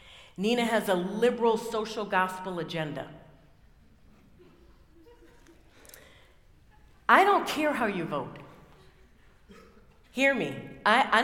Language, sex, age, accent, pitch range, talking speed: English, female, 50-69, American, 155-215 Hz, 90 wpm